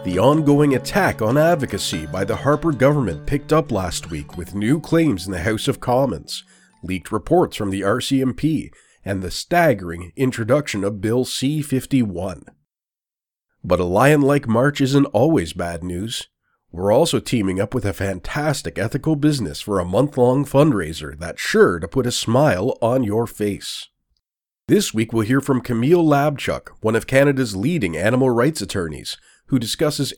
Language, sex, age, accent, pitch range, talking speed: English, male, 40-59, American, 95-145 Hz, 155 wpm